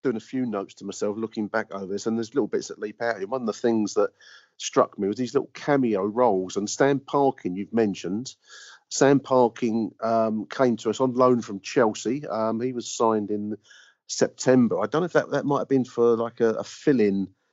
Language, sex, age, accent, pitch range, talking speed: English, male, 40-59, British, 100-125 Hz, 225 wpm